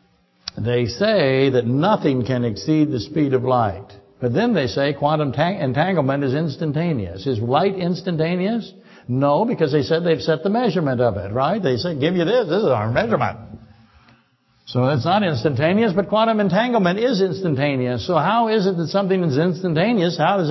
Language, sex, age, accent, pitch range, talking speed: English, male, 60-79, American, 130-190 Hz, 175 wpm